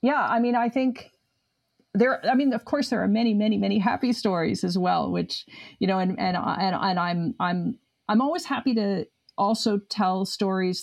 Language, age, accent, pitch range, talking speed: English, 40-59, American, 180-235 Hz, 190 wpm